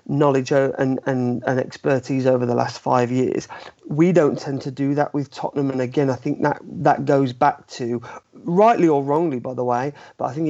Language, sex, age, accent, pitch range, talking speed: English, male, 30-49, British, 125-145 Hz, 205 wpm